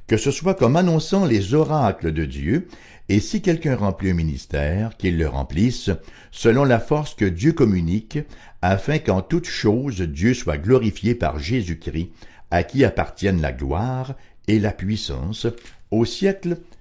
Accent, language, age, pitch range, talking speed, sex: French, English, 60-79, 95-150 Hz, 155 wpm, male